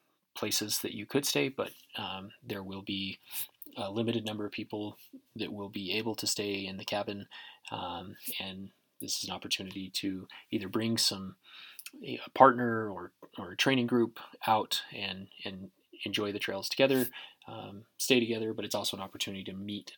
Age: 20-39